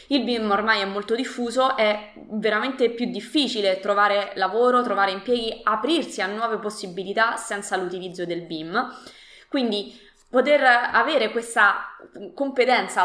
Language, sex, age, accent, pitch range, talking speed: Italian, female, 20-39, native, 195-240 Hz, 125 wpm